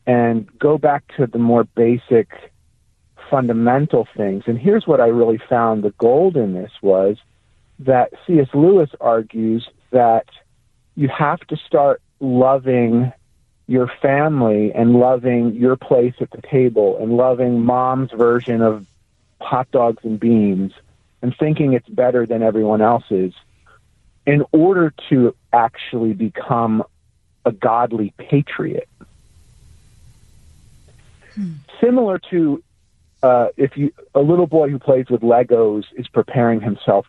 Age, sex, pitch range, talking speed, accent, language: 50-69, male, 105-130 Hz, 125 wpm, American, English